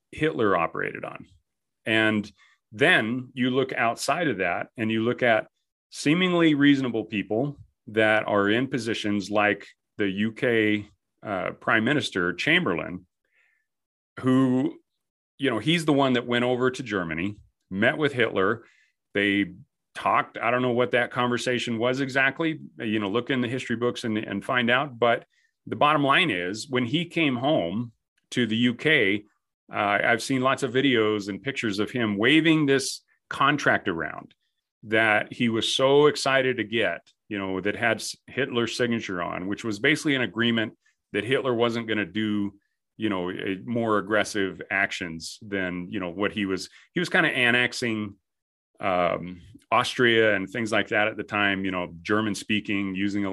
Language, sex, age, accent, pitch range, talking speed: English, male, 40-59, American, 100-125 Hz, 160 wpm